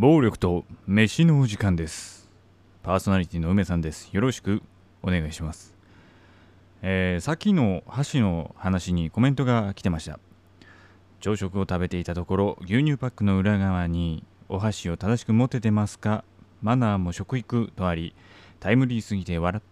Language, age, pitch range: Japanese, 20-39, 90-115 Hz